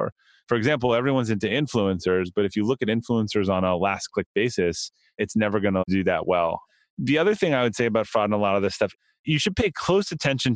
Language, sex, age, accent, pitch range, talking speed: English, male, 30-49, American, 100-125 Hz, 235 wpm